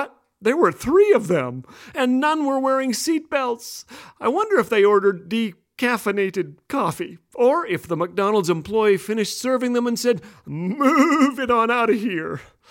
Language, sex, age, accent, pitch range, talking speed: English, male, 40-59, American, 160-225 Hz, 155 wpm